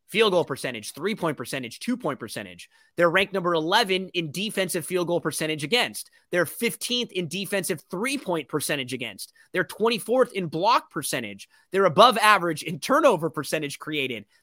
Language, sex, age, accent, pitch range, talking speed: English, male, 30-49, American, 160-200 Hz, 150 wpm